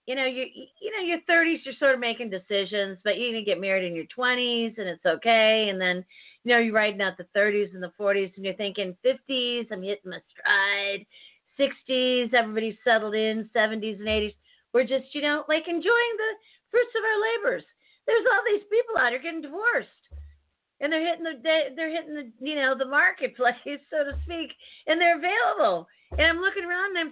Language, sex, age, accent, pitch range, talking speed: English, female, 40-59, American, 190-305 Hz, 205 wpm